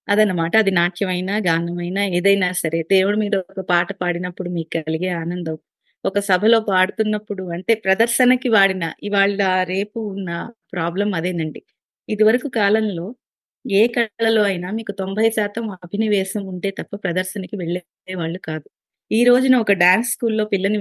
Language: Telugu